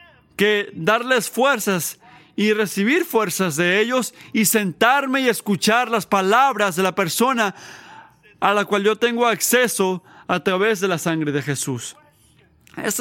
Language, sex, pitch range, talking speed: Spanish, male, 165-220 Hz, 145 wpm